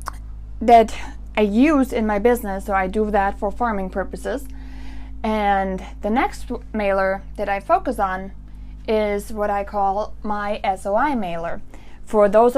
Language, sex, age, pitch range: English, female, 20-39, 205-270 Hz